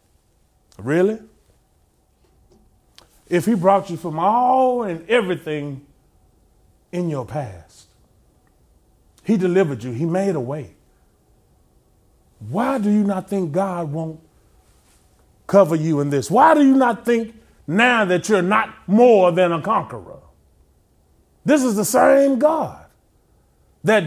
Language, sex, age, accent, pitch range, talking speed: English, male, 30-49, American, 170-255 Hz, 120 wpm